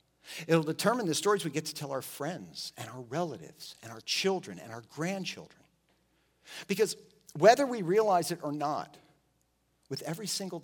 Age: 50-69